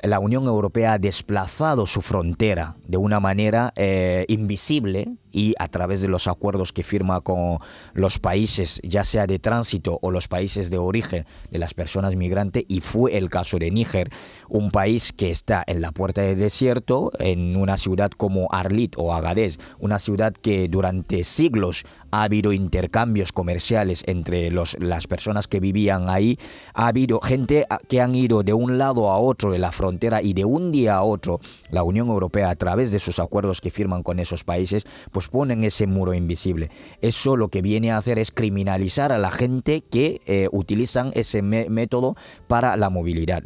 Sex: male